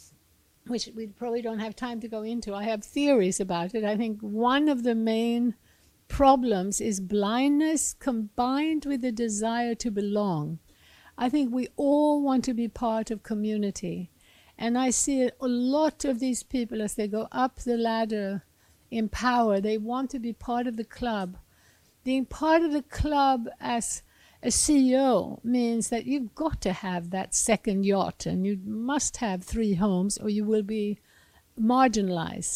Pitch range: 210-260 Hz